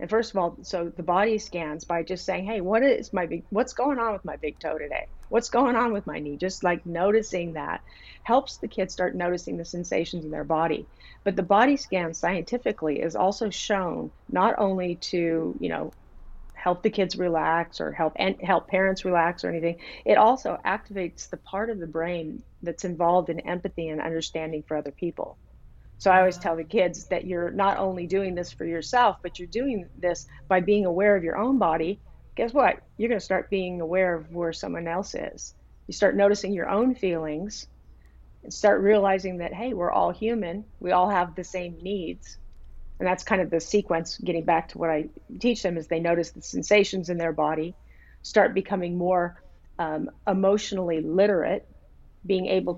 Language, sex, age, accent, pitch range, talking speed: English, female, 40-59, American, 165-200 Hz, 195 wpm